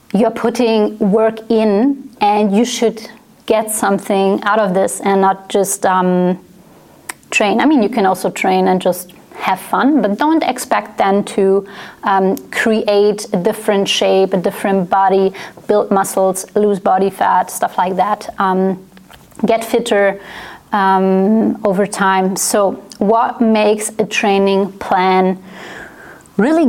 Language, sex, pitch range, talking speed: English, female, 195-230 Hz, 135 wpm